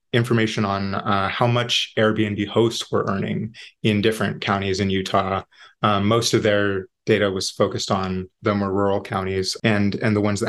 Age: 20-39